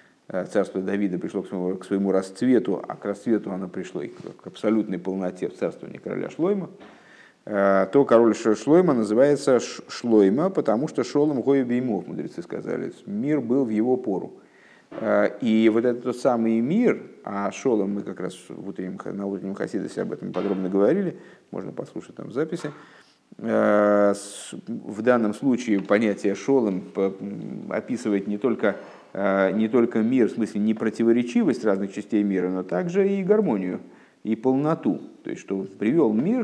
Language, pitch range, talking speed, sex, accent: Russian, 100-150 Hz, 145 wpm, male, native